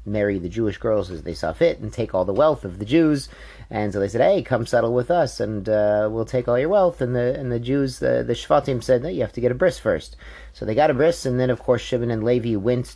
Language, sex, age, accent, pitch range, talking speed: English, male, 30-49, American, 100-130 Hz, 285 wpm